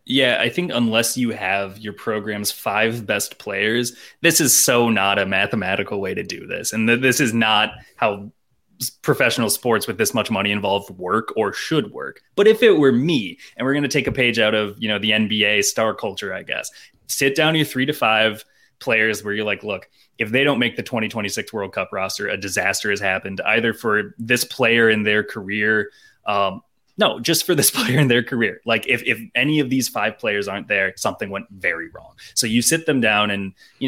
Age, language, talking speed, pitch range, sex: 20-39, English, 215 wpm, 105-130 Hz, male